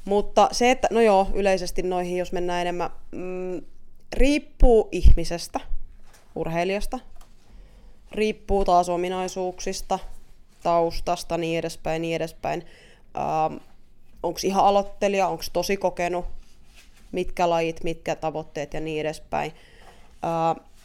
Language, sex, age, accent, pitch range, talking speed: Finnish, female, 20-39, native, 165-195 Hz, 105 wpm